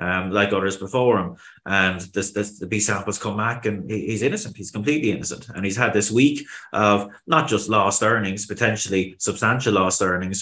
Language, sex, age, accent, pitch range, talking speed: English, male, 30-49, Irish, 95-110 Hz, 195 wpm